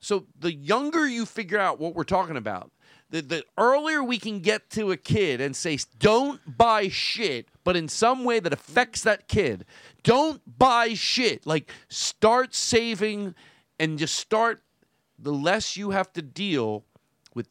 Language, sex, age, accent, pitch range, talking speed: English, male, 40-59, American, 150-215 Hz, 165 wpm